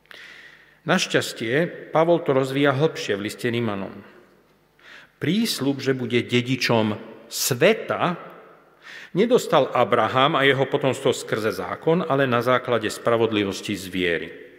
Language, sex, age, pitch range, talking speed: Slovak, male, 50-69, 110-160 Hz, 105 wpm